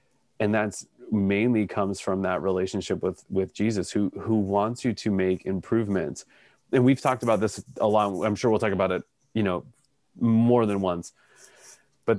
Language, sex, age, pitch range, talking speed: English, male, 20-39, 100-115 Hz, 175 wpm